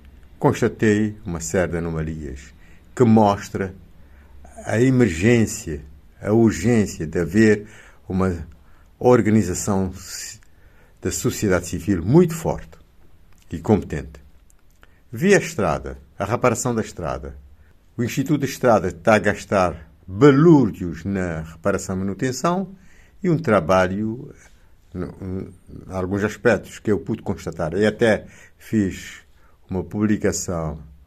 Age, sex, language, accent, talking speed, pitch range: 60-79, male, Portuguese, Brazilian, 110 wpm, 80-115 Hz